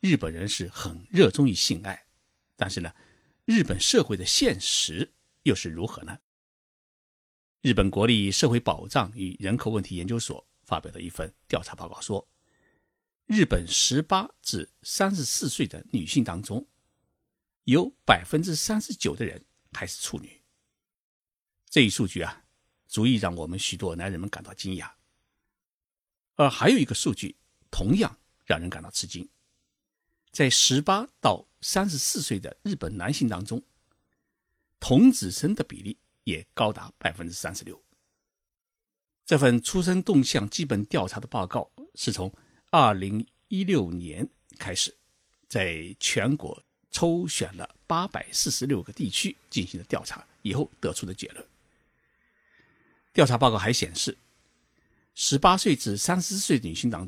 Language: Chinese